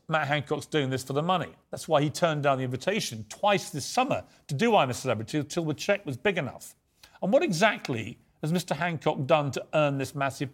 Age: 40-59